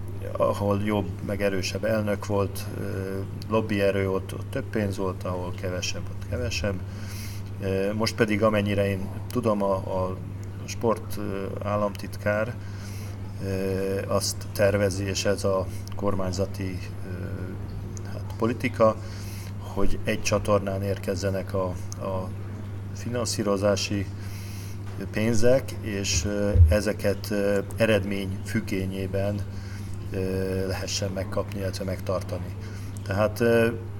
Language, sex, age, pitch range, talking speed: Hungarian, male, 40-59, 95-105 Hz, 90 wpm